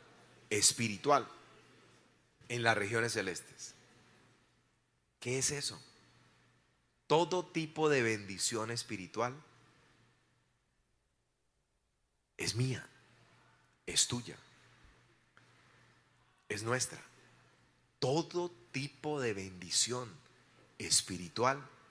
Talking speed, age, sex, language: 65 wpm, 30-49, male, Spanish